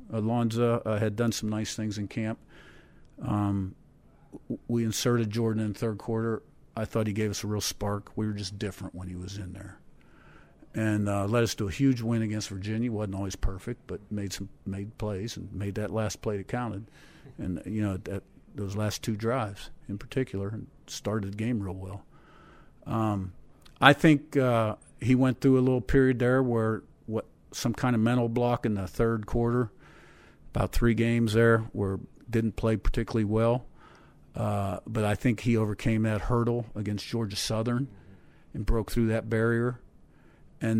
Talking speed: 180 wpm